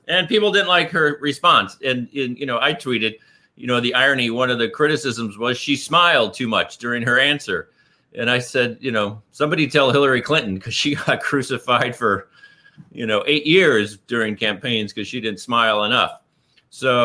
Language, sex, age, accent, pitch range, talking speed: English, male, 40-59, American, 110-140 Hz, 190 wpm